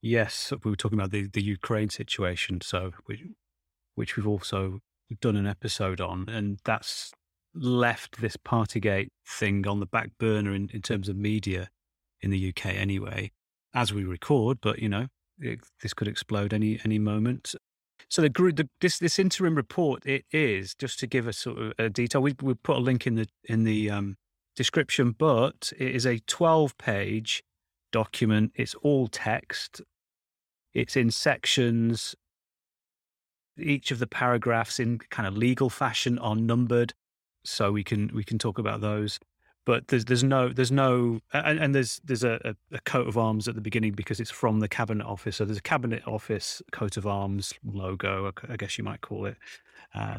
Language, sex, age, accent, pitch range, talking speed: English, male, 30-49, British, 100-125 Hz, 180 wpm